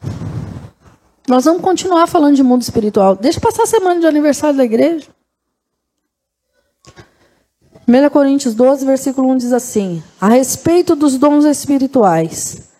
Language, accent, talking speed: Portuguese, Brazilian, 130 wpm